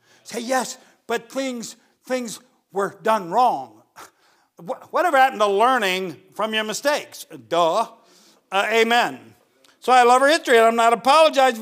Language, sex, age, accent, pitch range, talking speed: English, male, 50-69, American, 240-310 Hz, 145 wpm